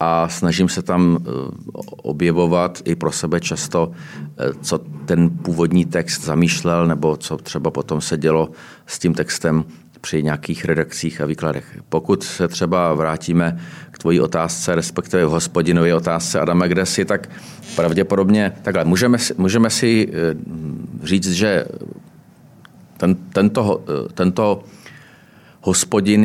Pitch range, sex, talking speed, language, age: 80-90 Hz, male, 125 wpm, Czech, 40-59